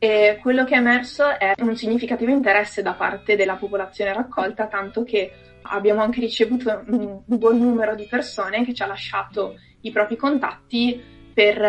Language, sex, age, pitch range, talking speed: Italian, female, 20-39, 205-240 Hz, 160 wpm